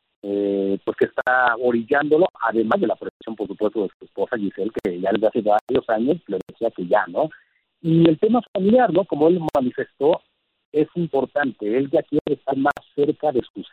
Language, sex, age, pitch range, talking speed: Spanish, male, 50-69, 115-165 Hz, 190 wpm